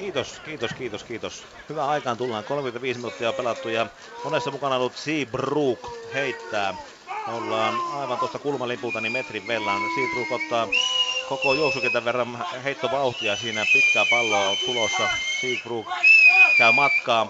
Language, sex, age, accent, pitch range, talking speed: Finnish, male, 30-49, native, 125-180 Hz, 140 wpm